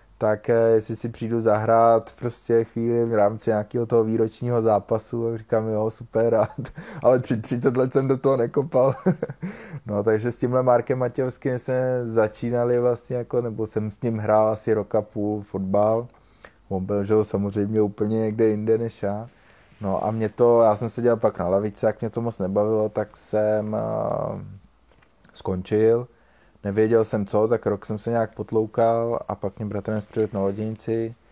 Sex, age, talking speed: male, 20-39, 165 wpm